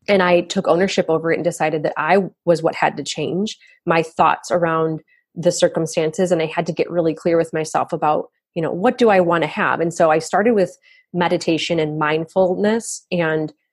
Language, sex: English, female